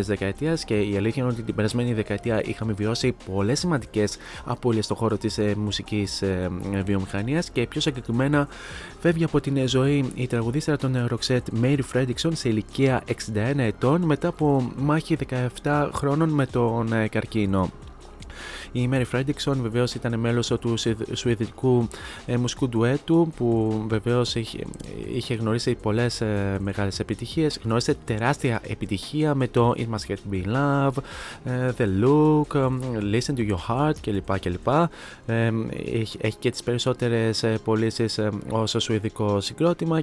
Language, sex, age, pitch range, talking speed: Greek, male, 20-39, 105-135 Hz, 145 wpm